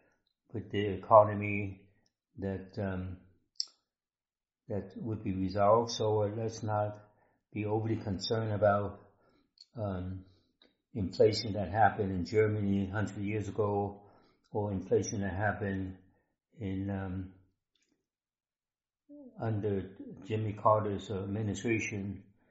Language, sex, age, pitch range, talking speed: English, male, 60-79, 95-110 Hz, 100 wpm